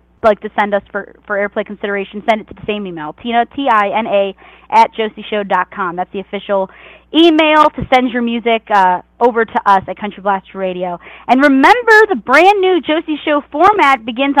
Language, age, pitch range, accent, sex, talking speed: English, 20-39, 210-295 Hz, American, female, 175 wpm